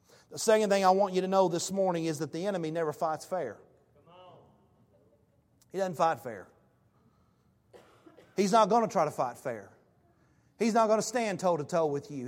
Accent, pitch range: American, 185-260 Hz